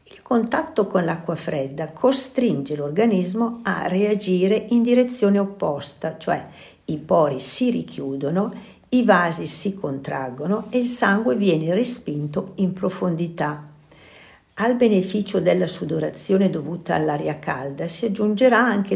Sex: female